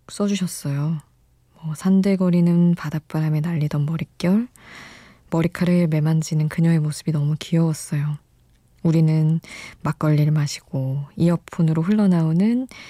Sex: female